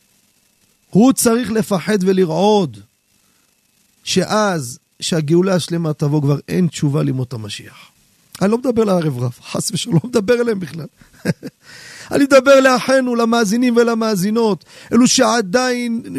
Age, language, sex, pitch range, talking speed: 40-59, Hebrew, male, 180-235 Hz, 115 wpm